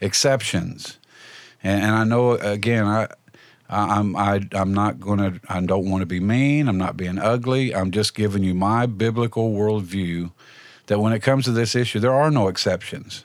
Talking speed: 185 wpm